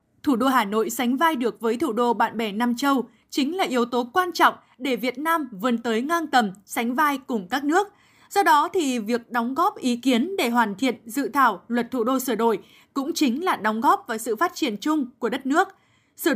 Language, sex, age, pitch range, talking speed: Vietnamese, female, 20-39, 235-295 Hz, 235 wpm